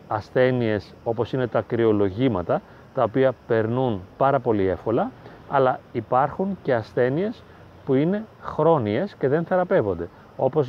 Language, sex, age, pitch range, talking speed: Greek, male, 30-49, 110-140 Hz, 125 wpm